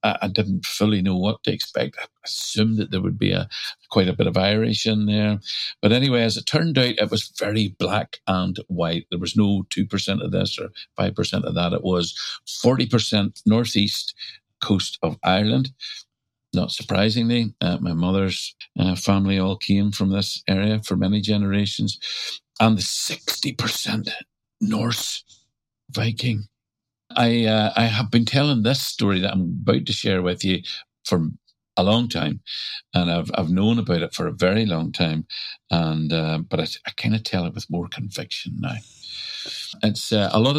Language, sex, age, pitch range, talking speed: English, male, 50-69, 90-110 Hz, 170 wpm